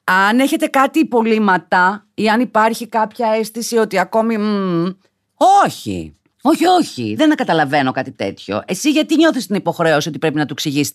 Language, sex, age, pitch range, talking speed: Greek, female, 30-49, 155-255 Hz, 160 wpm